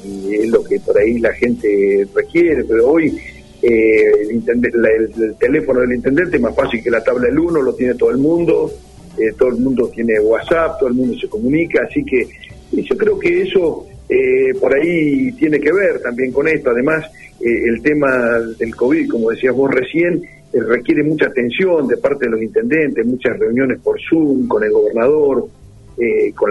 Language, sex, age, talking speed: Spanish, male, 50-69, 195 wpm